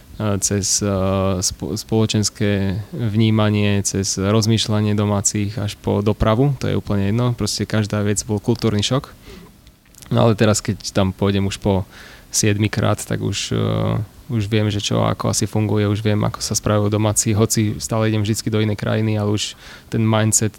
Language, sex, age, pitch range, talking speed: Slovak, male, 20-39, 100-110 Hz, 160 wpm